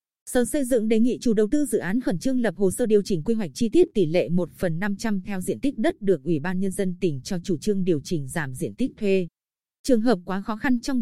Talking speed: 280 wpm